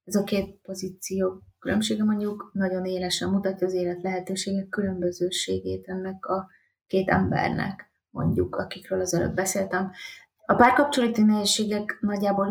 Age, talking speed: 20-39, 120 wpm